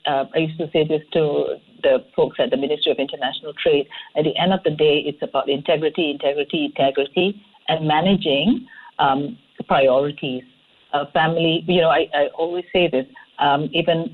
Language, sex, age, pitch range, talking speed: English, female, 50-69, 155-200 Hz, 175 wpm